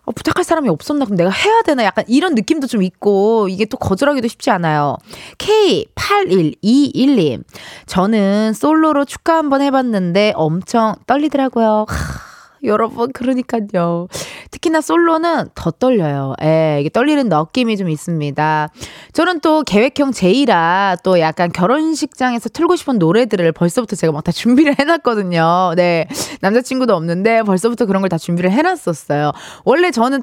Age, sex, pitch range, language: 20-39, female, 175-285 Hz, Korean